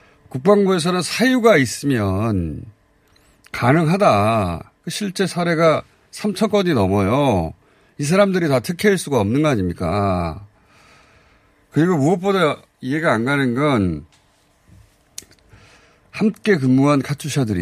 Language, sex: Korean, male